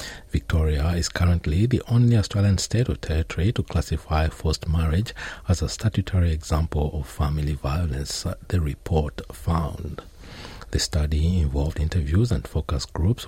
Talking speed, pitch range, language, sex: 135 wpm, 75-95 Hz, English, male